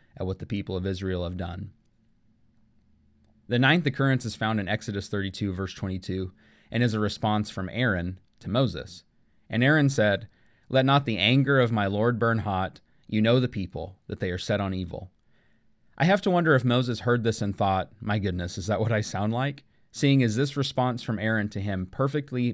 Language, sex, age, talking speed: English, male, 30-49, 200 wpm